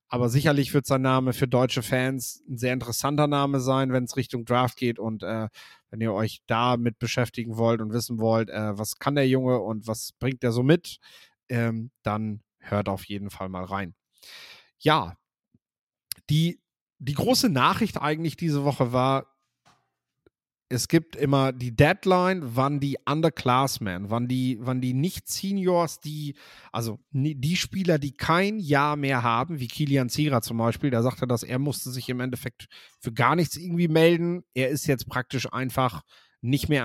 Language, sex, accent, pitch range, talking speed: German, male, German, 120-145 Hz, 170 wpm